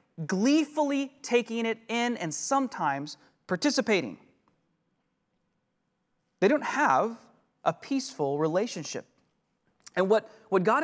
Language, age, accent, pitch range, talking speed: English, 30-49, American, 175-265 Hz, 95 wpm